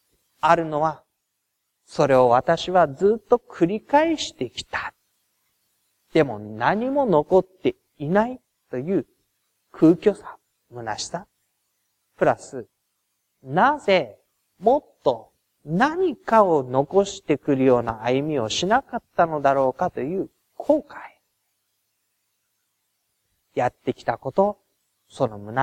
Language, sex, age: Japanese, male, 40-59